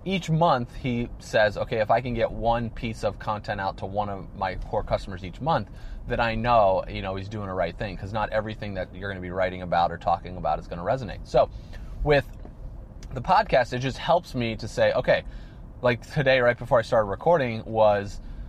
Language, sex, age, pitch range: English, male, 30-49, 100-125 Hz